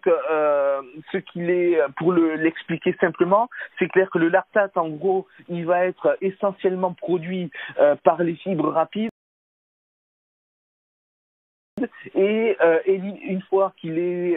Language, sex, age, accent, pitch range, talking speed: French, male, 40-59, French, 145-180 Hz, 130 wpm